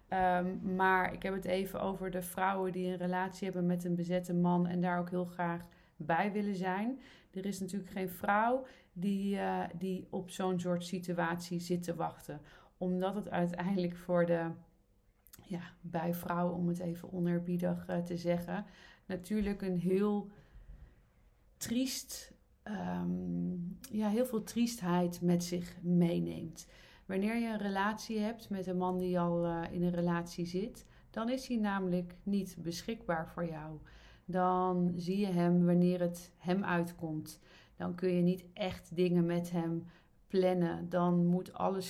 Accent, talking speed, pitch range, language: Dutch, 150 wpm, 170-190 Hz, Dutch